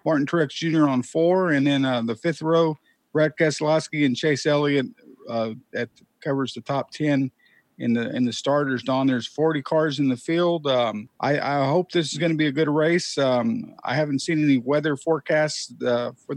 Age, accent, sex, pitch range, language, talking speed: 50-69, American, male, 135-160 Hz, English, 200 wpm